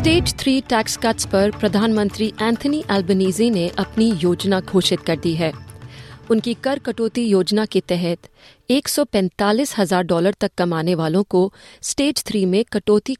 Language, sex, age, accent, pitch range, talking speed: Hindi, female, 30-49, native, 175-225 Hz, 125 wpm